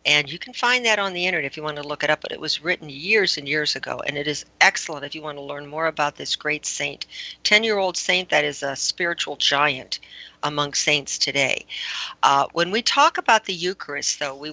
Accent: American